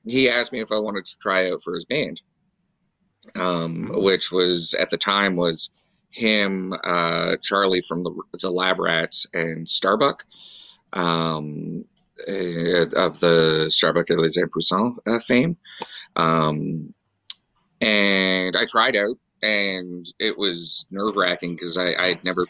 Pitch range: 85-115 Hz